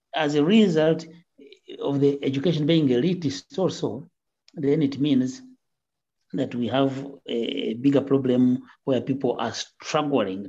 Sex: male